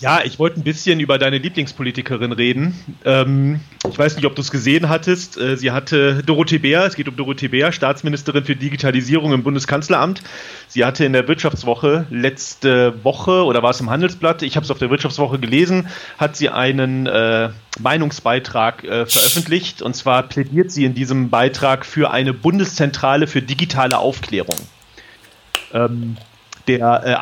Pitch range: 125-150 Hz